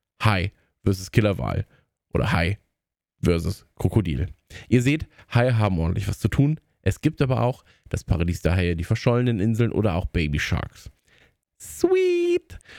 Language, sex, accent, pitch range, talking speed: German, male, German, 90-120 Hz, 145 wpm